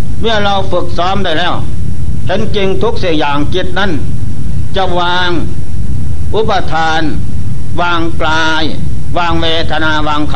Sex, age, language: male, 60-79, Thai